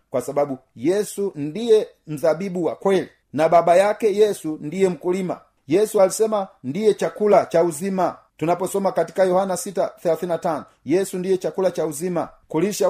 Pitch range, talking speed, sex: 160-195 Hz, 135 wpm, male